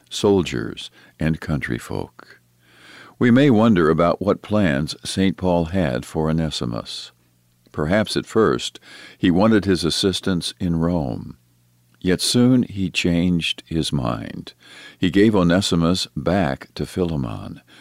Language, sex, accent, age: English, male, American, 50-69